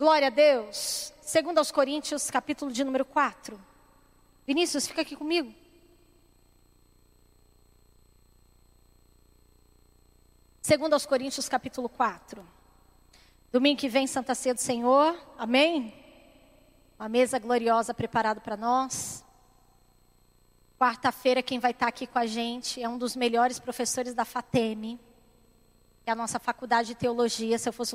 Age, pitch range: 20-39, 220-265 Hz